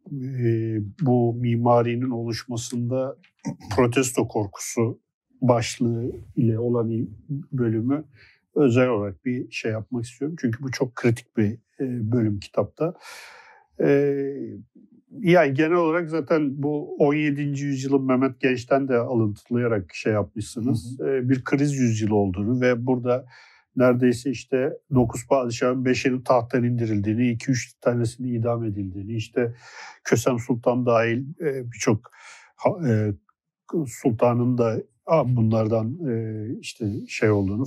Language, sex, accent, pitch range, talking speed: Turkish, male, native, 120-150 Hz, 100 wpm